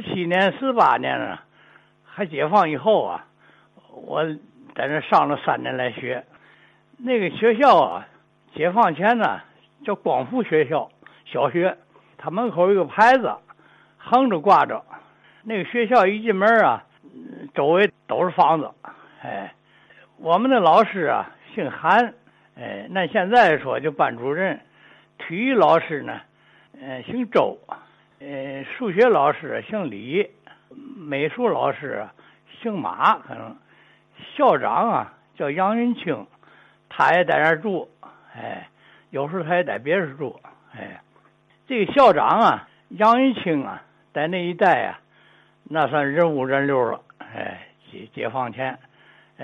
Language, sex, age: Chinese, male, 60-79